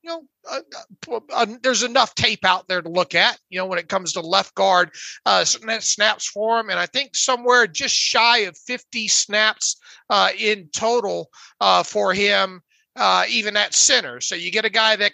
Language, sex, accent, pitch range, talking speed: English, male, American, 190-230 Hz, 200 wpm